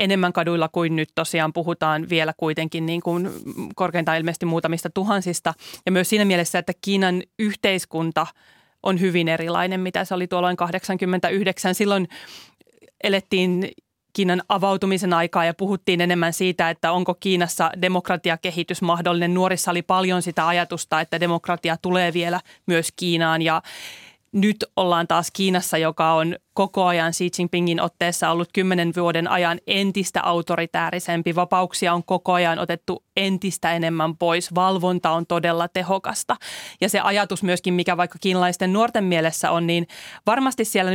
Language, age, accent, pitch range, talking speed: Finnish, 30-49, native, 170-190 Hz, 140 wpm